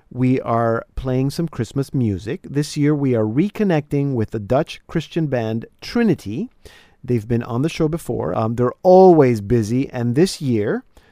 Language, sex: English, male